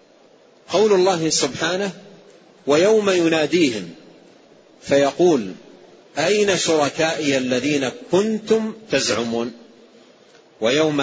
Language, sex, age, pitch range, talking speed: Arabic, male, 40-59, 135-185 Hz, 65 wpm